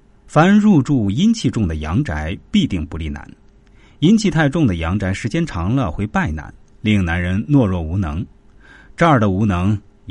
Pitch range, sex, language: 90-125 Hz, male, Chinese